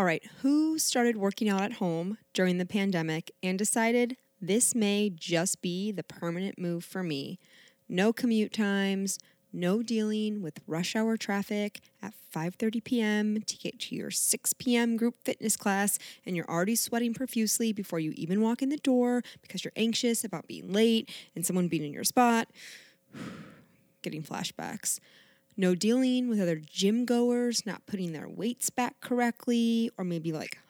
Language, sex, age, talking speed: English, female, 20-39, 165 wpm